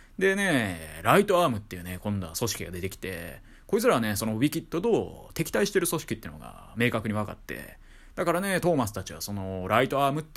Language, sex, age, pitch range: Japanese, male, 20-39, 100-155 Hz